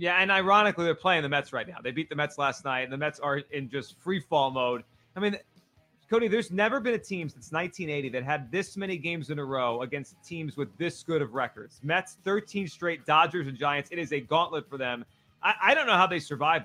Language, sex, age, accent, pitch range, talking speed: English, male, 30-49, American, 150-210 Hz, 245 wpm